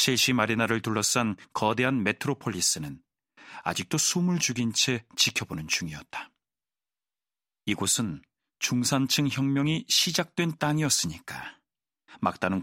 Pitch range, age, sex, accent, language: 115-140 Hz, 40-59, male, native, Korean